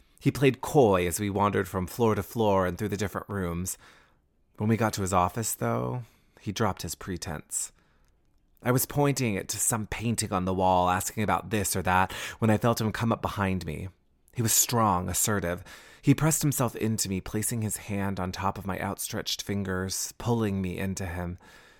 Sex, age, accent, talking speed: male, 30-49, American, 195 wpm